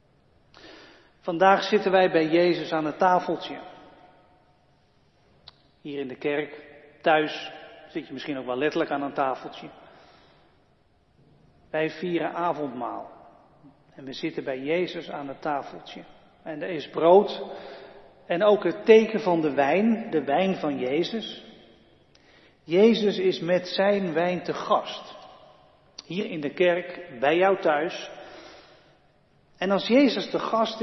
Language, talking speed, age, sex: Dutch, 130 wpm, 40-59, male